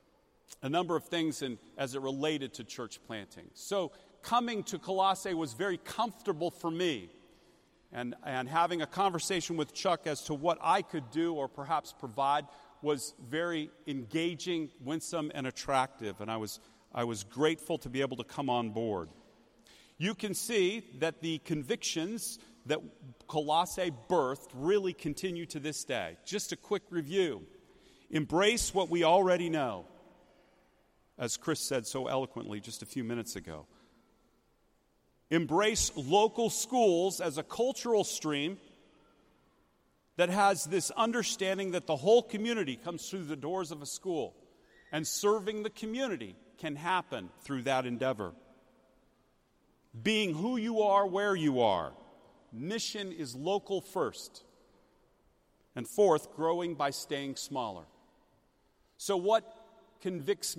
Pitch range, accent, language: 140-195 Hz, American, English